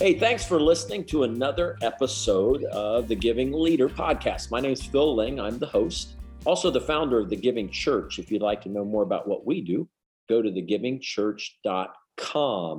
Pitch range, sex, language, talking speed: 105-155 Hz, male, English, 190 wpm